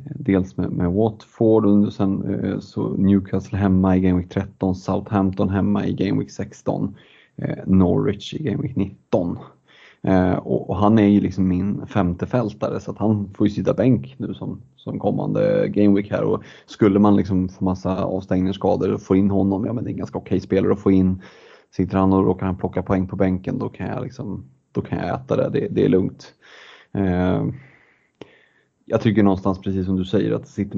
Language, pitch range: Swedish, 95-105 Hz